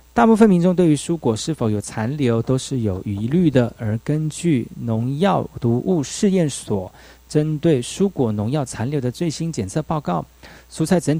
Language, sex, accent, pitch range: Chinese, male, native, 115-160 Hz